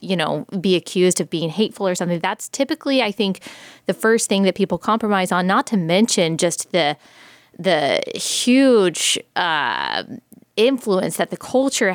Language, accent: English, American